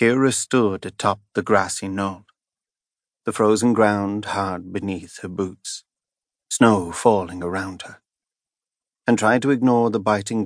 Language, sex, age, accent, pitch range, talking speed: English, male, 30-49, British, 95-110 Hz, 130 wpm